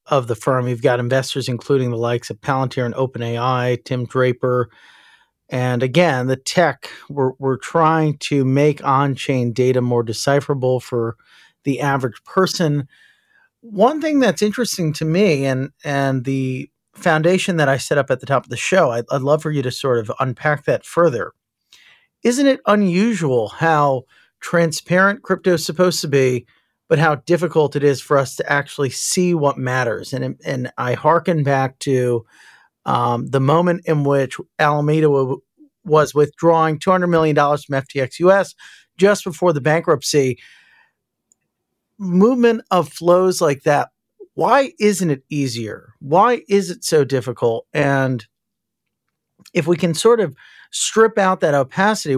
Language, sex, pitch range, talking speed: English, male, 130-180 Hz, 150 wpm